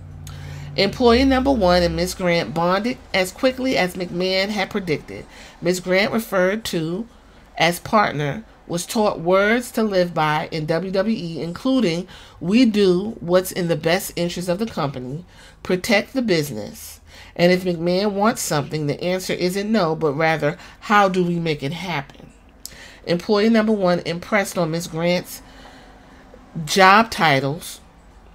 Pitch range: 165-210 Hz